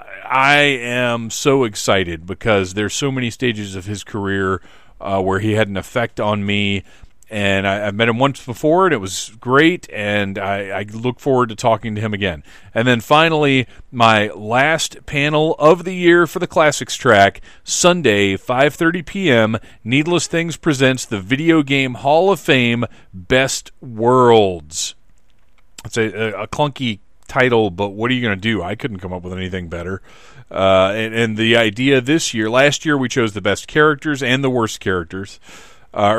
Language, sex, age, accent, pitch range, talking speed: English, male, 40-59, American, 100-130 Hz, 175 wpm